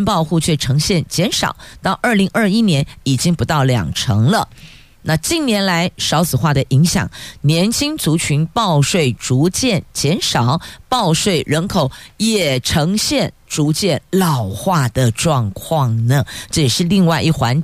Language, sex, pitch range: Chinese, female, 140-200 Hz